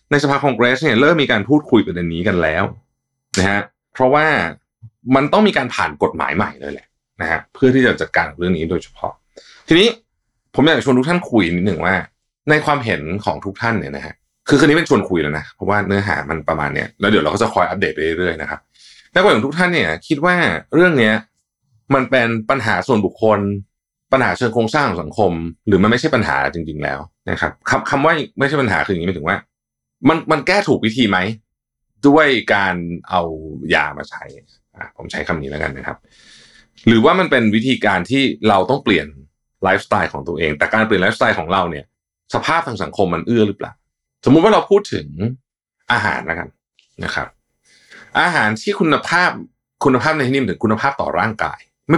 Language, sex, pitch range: Thai, male, 95-140 Hz